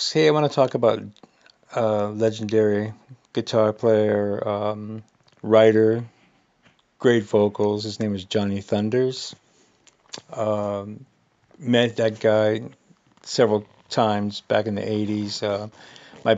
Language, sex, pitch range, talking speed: English, male, 100-110 Hz, 115 wpm